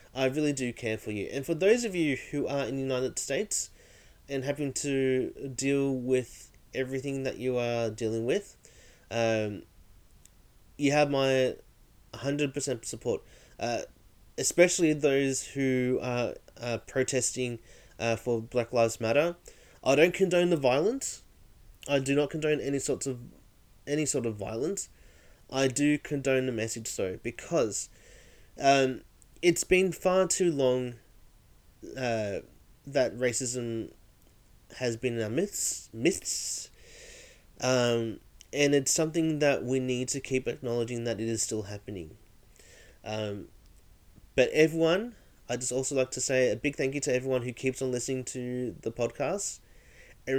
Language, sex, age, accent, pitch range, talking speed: English, male, 30-49, Australian, 115-140 Hz, 145 wpm